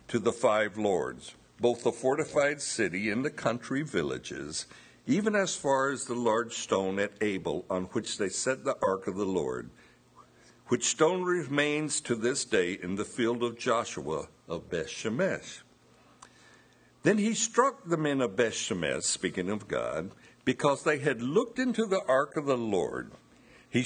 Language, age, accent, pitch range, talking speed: English, 60-79, American, 110-155 Hz, 165 wpm